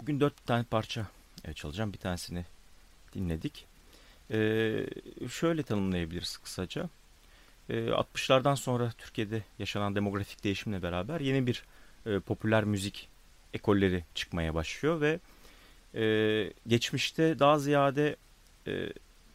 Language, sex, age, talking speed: Turkish, male, 40-59, 105 wpm